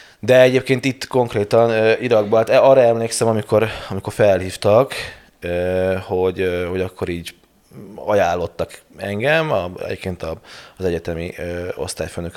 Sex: male